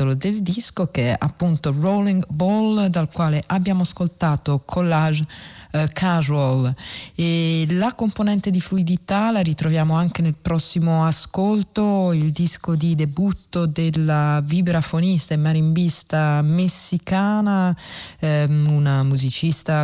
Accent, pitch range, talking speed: native, 140-180 Hz, 110 wpm